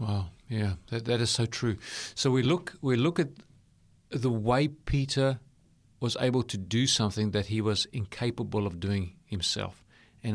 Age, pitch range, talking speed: 40-59, 105-145 Hz, 170 wpm